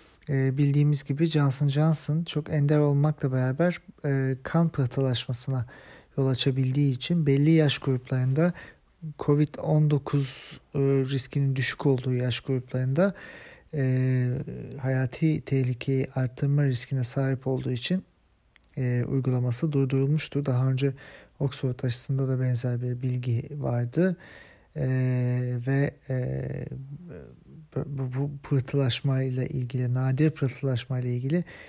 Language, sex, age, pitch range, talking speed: German, male, 40-59, 130-150 Hz, 105 wpm